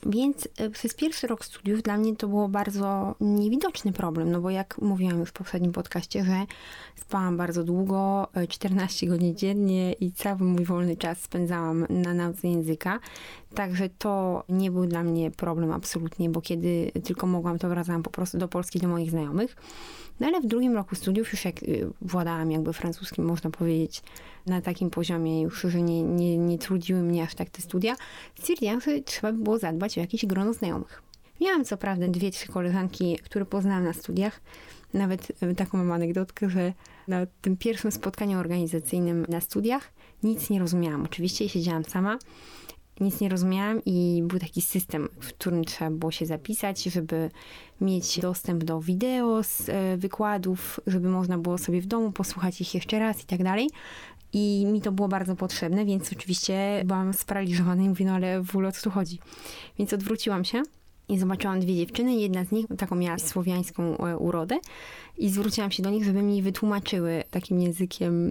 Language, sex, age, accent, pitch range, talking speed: Polish, female, 20-39, native, 175-205 Hz, 170 wpm